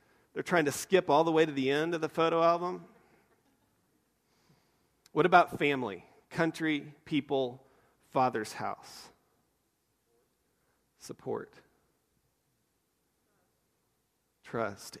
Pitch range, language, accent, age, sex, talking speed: 115-145 Hz, English, American, 40-59, male, 90 wpm